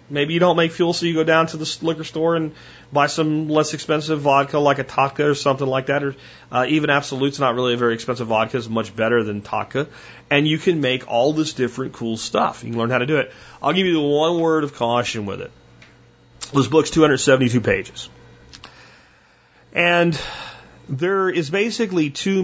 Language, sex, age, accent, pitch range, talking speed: English, male, 30-49, American, 125-170 Hz, 200 wpm